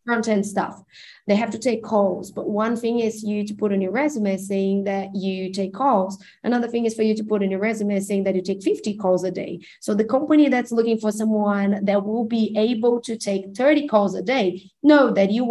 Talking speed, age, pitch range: 235 wpm, 20-39, 195-230 Hz